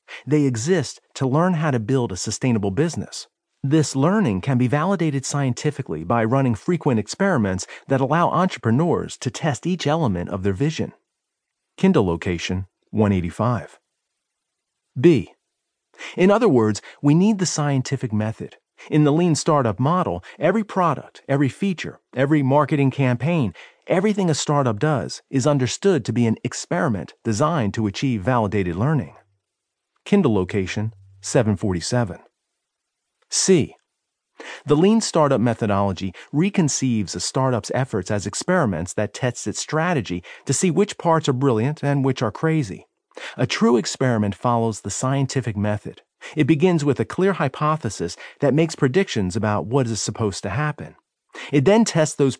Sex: male